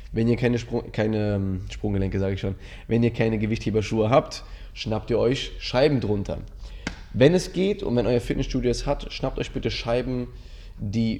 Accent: German